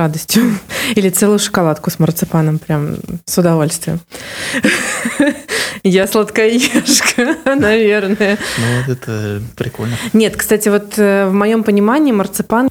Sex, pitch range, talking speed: female, 165-210 Hz, 105 wpm